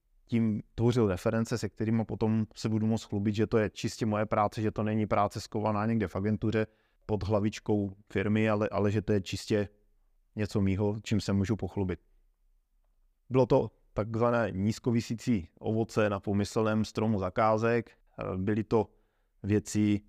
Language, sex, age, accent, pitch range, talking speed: Czech, male, 20-39, native, 105-115 Hz, 150 wpm